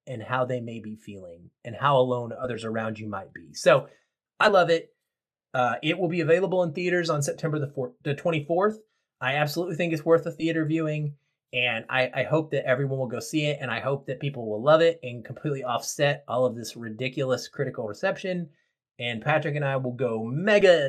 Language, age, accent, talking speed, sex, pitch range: English, 20-39, American, 205 wpm, male, 125-155 Hz